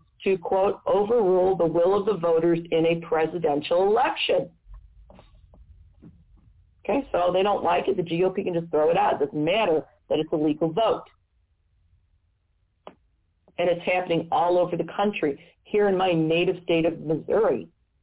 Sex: female